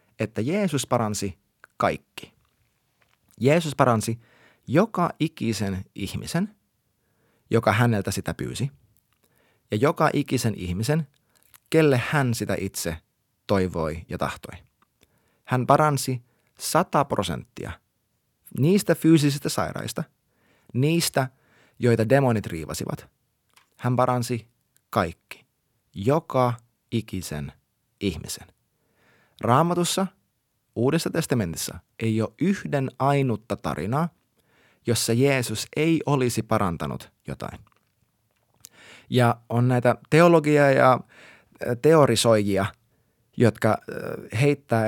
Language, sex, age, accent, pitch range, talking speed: Finnish, male, 30-49, native, 110-140 Hz, 85 wpm